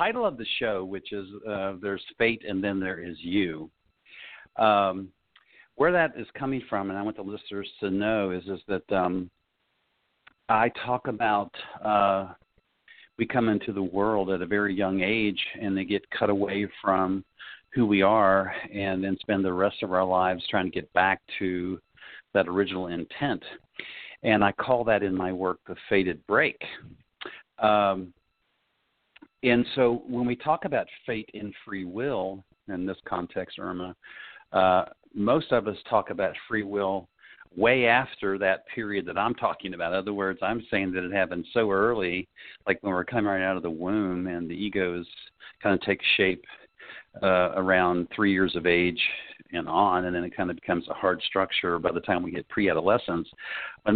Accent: American